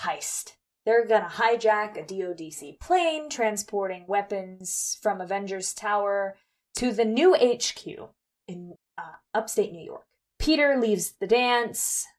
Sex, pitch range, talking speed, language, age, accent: female, 185-235 Hz, 125 wpm, English, 20-39, American